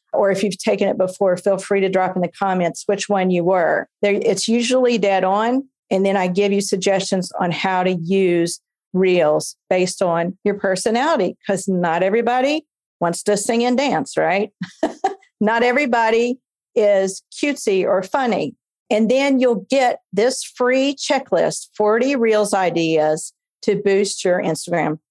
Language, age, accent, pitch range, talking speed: English, 50-69, American, 190-230 Hz, 155 wpm